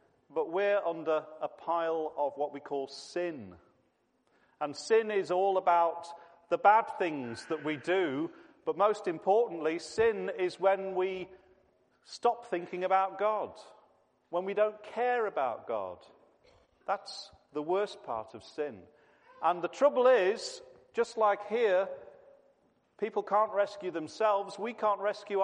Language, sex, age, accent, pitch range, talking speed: English, male, 40-59, British, 170-245 Hz, 135 wpm